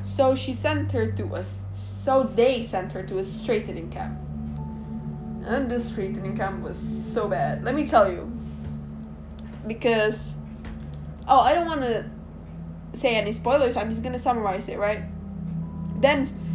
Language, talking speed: English, 150 wpm